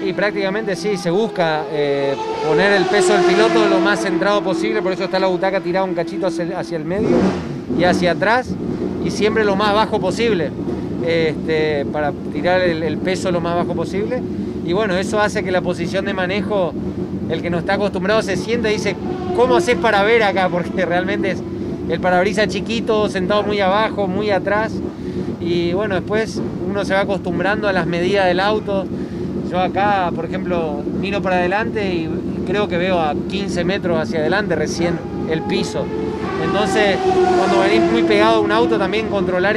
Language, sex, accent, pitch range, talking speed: Spanish, male, Argentinian, 175-200 Hz, 180 wpm